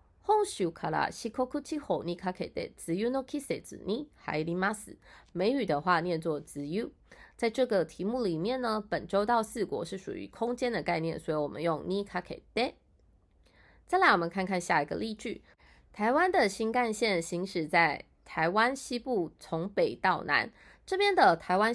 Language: Japanese